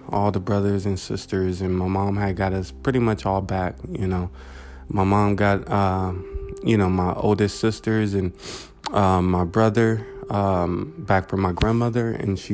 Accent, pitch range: American, 95-110 Hz